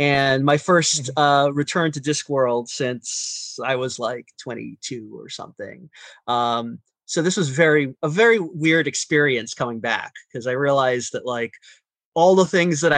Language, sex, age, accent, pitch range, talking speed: English, male, 30-49, American, 130-170 Hz, 155 wpm